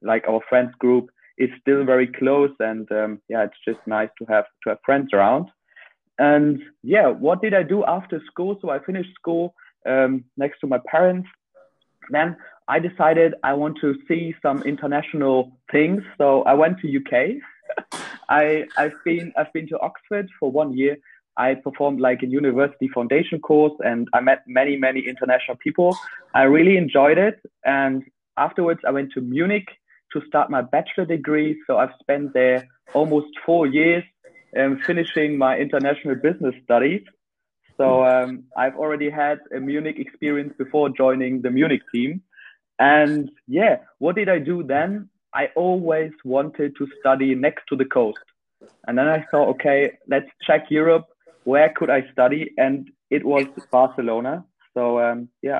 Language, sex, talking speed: English, male, 165 wpm